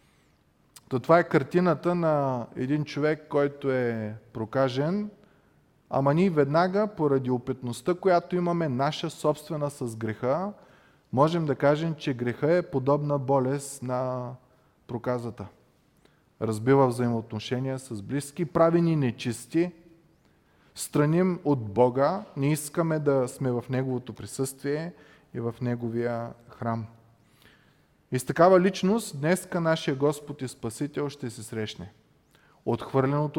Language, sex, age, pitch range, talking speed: Bulgarian, male, 30-49, 125-170 Hz, 115 wpm